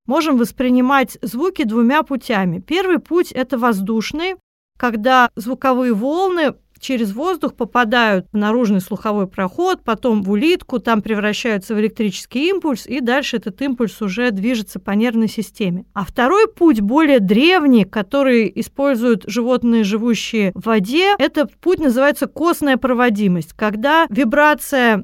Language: Russian